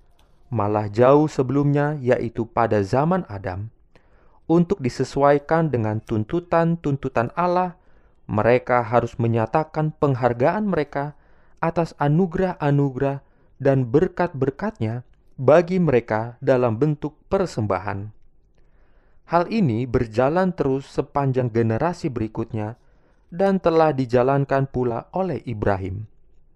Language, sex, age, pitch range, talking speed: Indonesian, male, 20-39, 115-165 Hz, 90 wpm